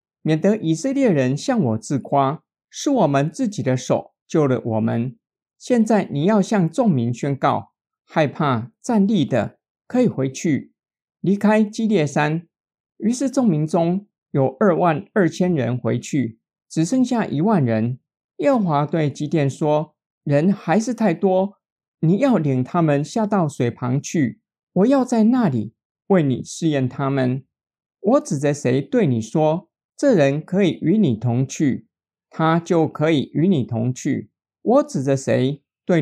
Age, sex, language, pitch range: 50-69, male, Chinese, 135-195 Hz